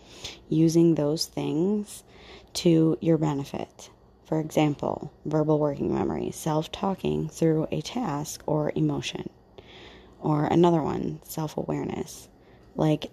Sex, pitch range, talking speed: female, 150-175 Hz, 100 wpm